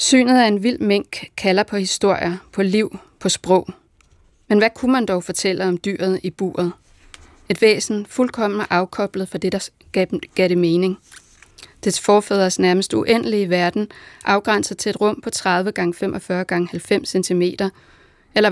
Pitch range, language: 180-210 Hz, Danish